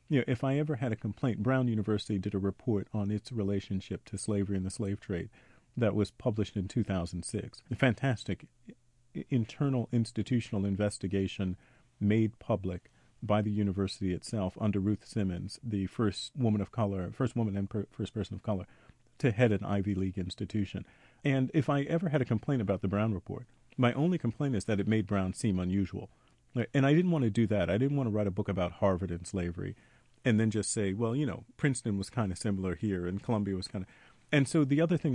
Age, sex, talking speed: 40-59, male, 210 wpm